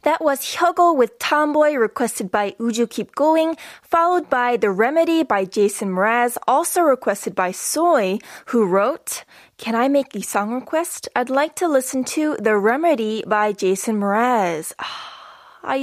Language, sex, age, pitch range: Korean, female, 20-39, 215-275 Hz